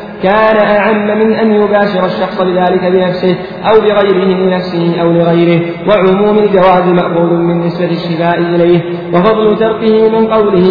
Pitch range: 175-210 Hz